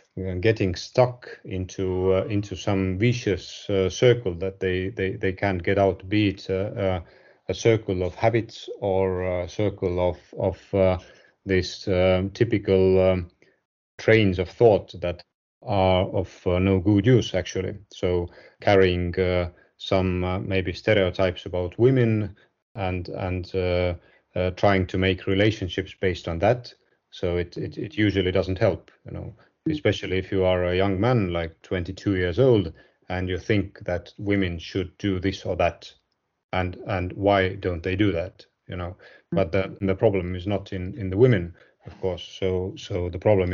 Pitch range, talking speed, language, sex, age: 90-105 Hz, 165 wpm, English, male, 40-59